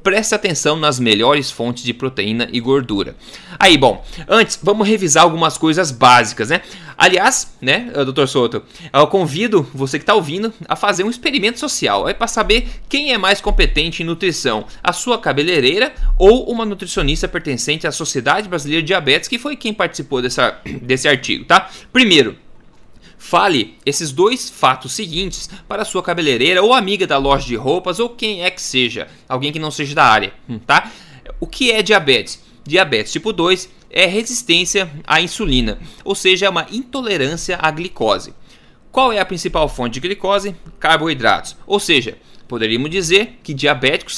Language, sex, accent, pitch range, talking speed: Portuguese, male, Brazilian, 140-205 Hz, 165 wpm